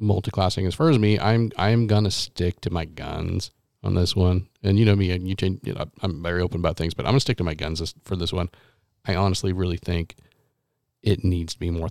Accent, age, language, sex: American, 40-59, English, male